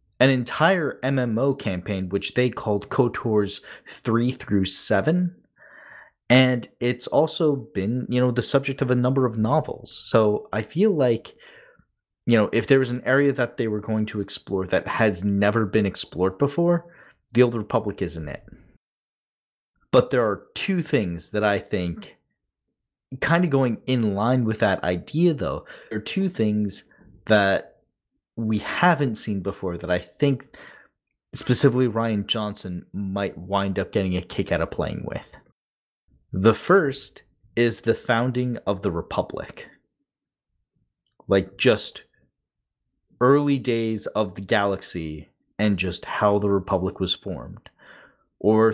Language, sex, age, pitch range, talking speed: English, male, 30-49, 100-130 Hz, 145 wpm